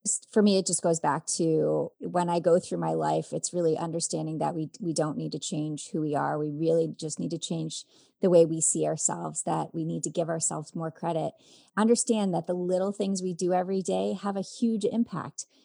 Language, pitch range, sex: English, 165-225 Hz, female